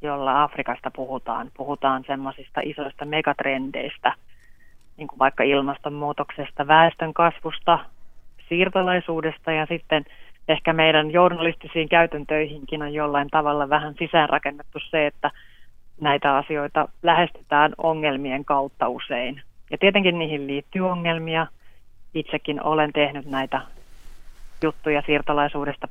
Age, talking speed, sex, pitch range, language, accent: 30-49, 100 wpm, female, 135-155 Hz, Finnish, native